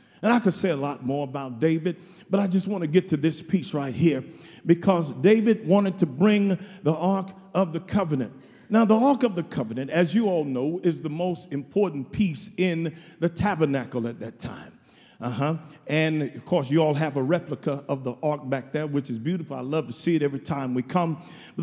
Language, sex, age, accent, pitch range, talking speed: English, male, 50-69, American, 155-200 Hz, 220 wpm